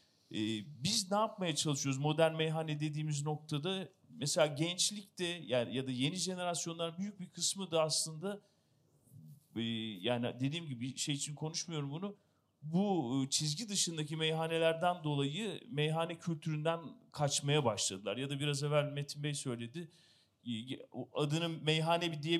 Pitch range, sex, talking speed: 140-175 Hz, male, 125 wpm